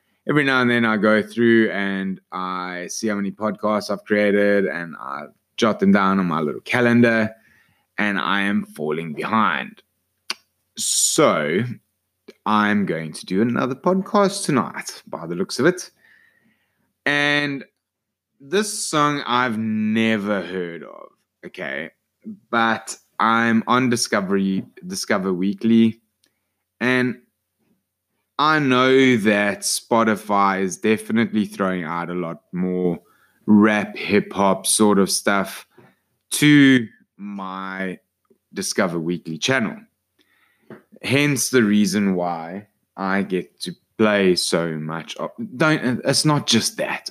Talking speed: 120 wpm